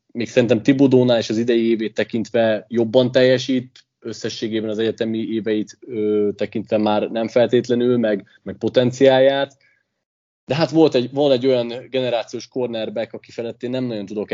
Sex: male